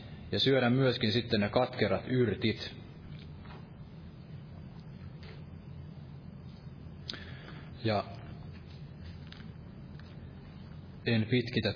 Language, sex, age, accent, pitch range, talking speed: Finnish, male, 30-49, native, 100-130 Hz, 50 wpm